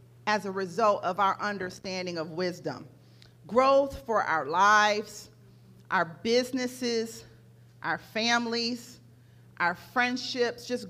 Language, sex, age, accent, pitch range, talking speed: English, female, 40-59, American, 180-230 Hz, 105 wpm